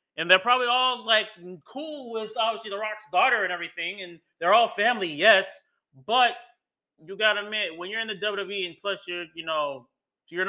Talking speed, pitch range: 195 wpm, 170-215 Hz